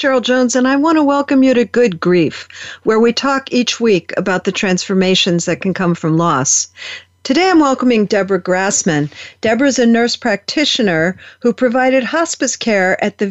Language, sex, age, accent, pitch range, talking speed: English, female, 50-69, American, 180-245 Hz, 175 wpm